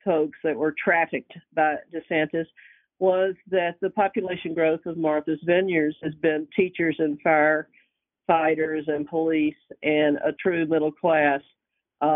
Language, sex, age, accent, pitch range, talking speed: English, female, 50-69, American, 155-205 Hz, 130 wpm